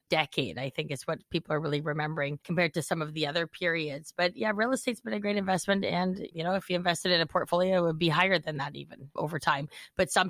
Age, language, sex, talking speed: 30-49, English, female, 255 wpm